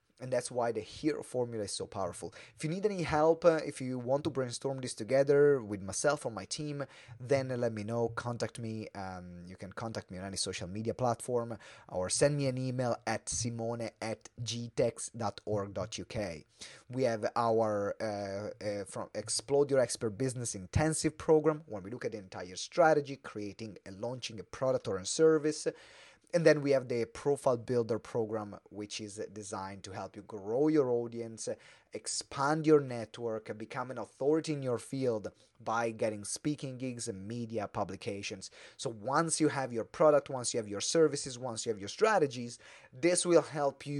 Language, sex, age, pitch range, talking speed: English, male, 30-49, 110-145 Hz, 180 wpm